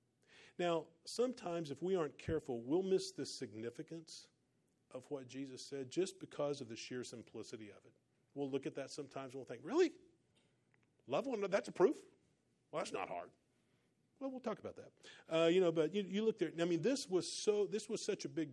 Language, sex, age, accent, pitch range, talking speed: English, male, 40-59, American, 125-170 Hz, 205 wpm